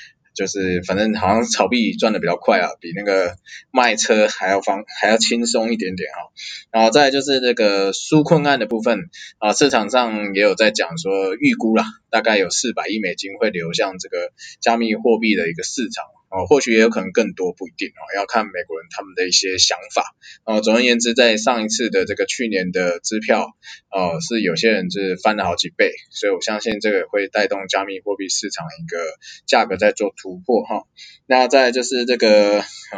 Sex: male